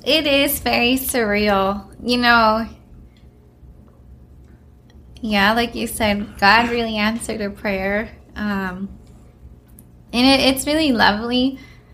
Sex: female